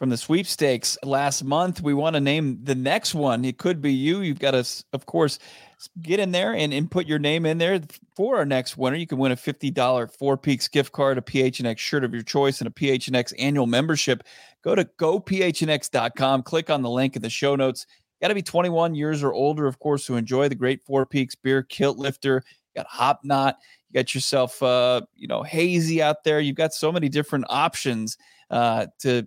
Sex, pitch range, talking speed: male, 125-150 Hz, 215 wpm